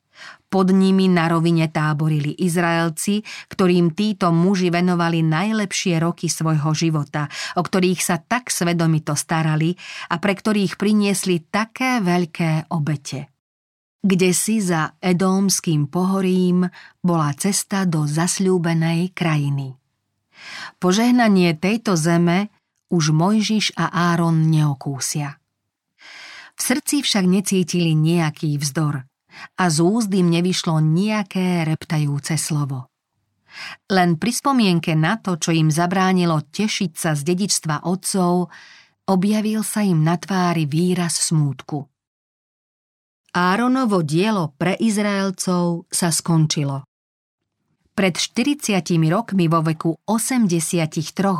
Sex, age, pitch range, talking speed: female, 40-59, 160-195 Hz, 105 wpm